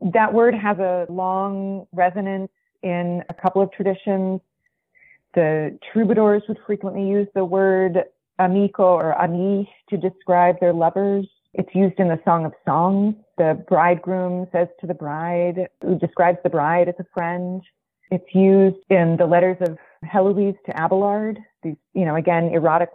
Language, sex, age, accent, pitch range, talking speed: English, female, 30-49, American, 170-195 Hz, 155 wpm